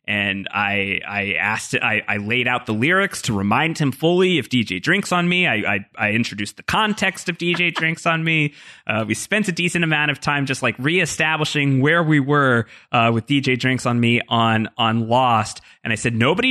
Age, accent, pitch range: 30-49, American, 110-170 Hz